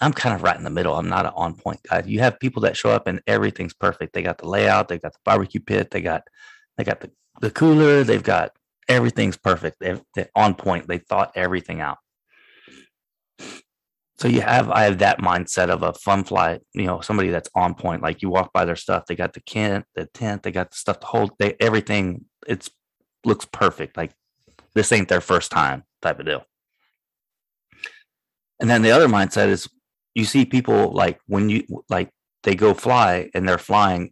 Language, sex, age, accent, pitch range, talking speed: English, male, 30-49, American, 90-120 Hz, 205 wpm